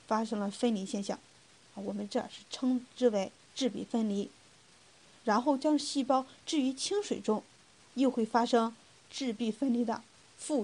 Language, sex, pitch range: Chinese, female, 210-265 Hz